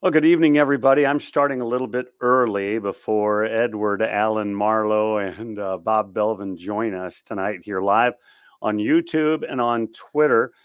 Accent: American